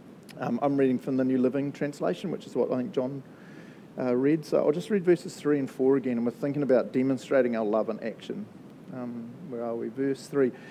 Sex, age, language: male, 40-59, English